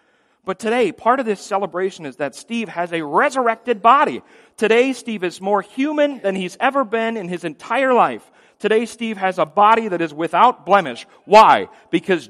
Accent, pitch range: American, 130-205 Hz